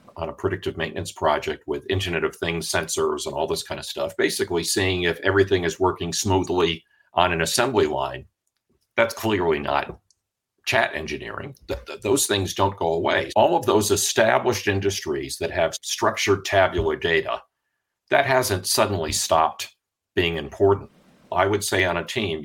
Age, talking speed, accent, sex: 50-69, 165 wpm, American, male